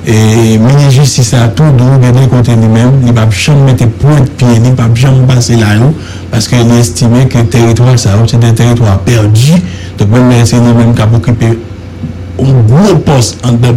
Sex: male